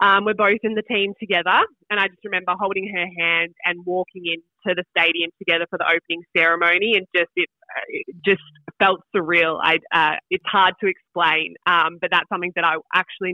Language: English